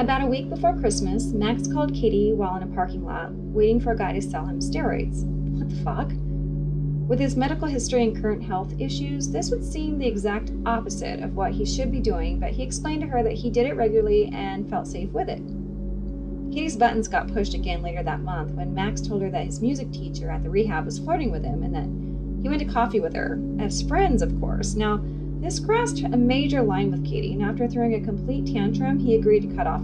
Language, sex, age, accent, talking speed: English, female, 30-49, American, 225 wpm